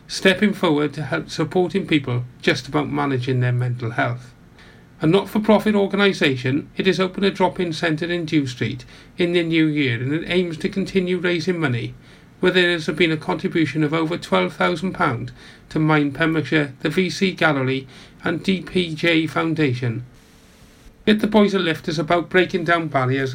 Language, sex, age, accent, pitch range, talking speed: English, male, 40-59, British, 135-185 Hz, 160 wpm